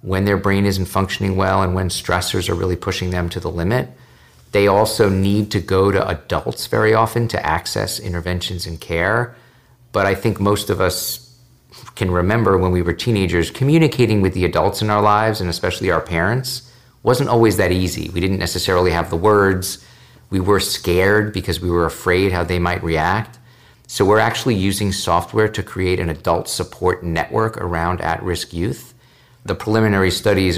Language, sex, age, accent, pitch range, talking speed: English, male, 50-69, American, 90-110 Hz, 180 wpm